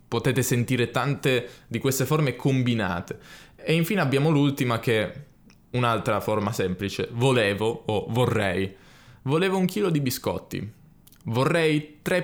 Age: 20-39